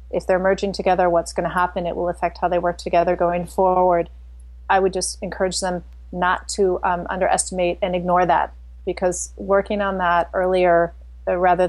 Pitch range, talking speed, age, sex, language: 170-195 Hz, 180 wpm, 30-49, female, English